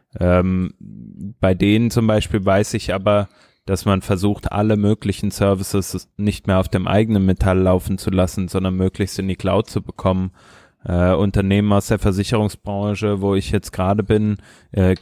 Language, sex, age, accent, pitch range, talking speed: German, male, 20-39, German, 95-110 Hz, 165 wpm